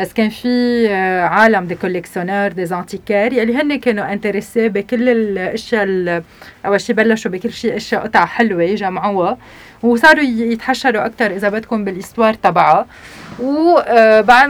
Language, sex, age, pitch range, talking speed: Arabic, female, 30-49, 195-245 Hz, 125 wpm